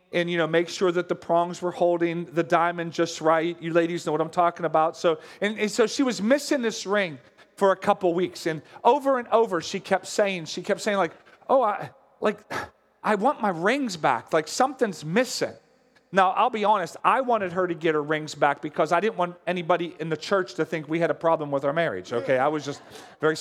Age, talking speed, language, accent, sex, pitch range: 40-59, 235 wpm, English, American, male, 170-215 Hz